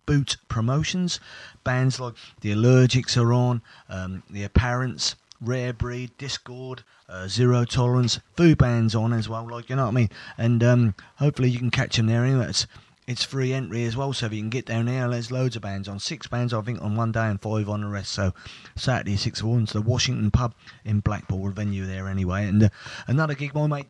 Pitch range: 100-130 Hz